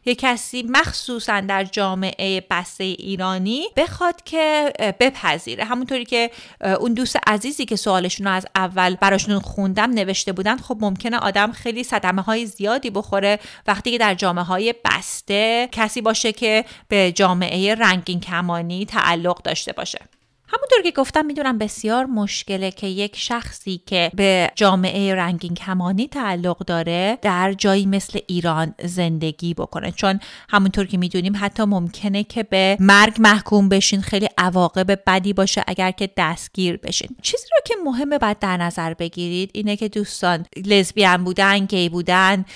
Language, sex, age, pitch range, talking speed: Persian, female, 30-49, 185-225 Hz, 145 wpm